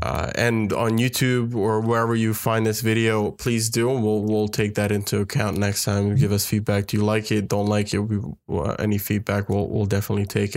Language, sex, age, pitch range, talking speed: English, male, 20-39, 100-115 Hz, 215 wpm